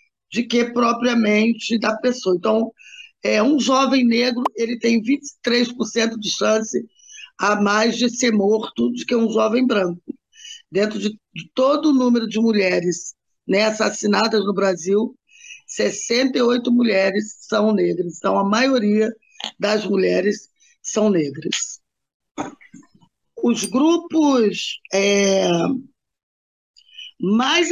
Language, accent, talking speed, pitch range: Portuguese, Brazilian, 115 wpm, 205-250 Hz